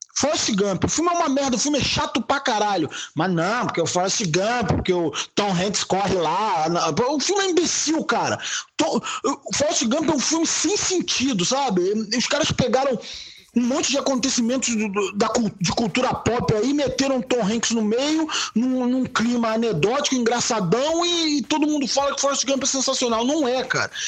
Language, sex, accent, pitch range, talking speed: Portuguese, male, Brazilian, 230-295 Hz, 180 wpm